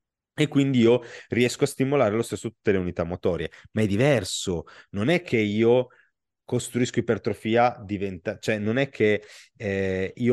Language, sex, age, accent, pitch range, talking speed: Italian, male, 30-49, native, 105-135 Hz, 165 wpm